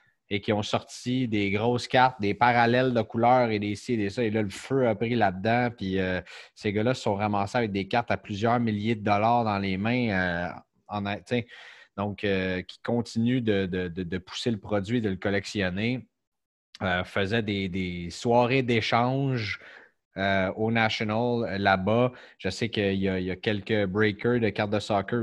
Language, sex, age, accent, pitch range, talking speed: French, male, 30-49, Canadian, 95-115 Hz, 195 wpm